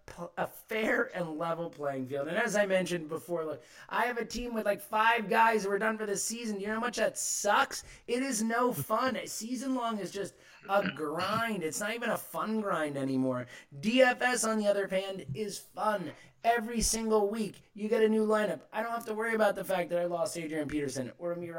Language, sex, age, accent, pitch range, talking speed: English, male, 30-49, American, 155-225 Hz, 220 wpm